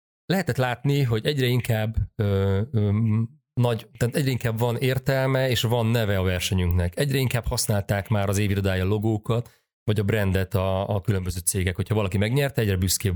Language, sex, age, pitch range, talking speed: Hungarian, male, 30-49, 95-120 Hz, 170 wpm